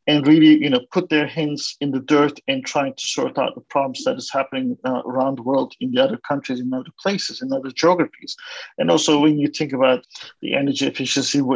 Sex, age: male, 50-69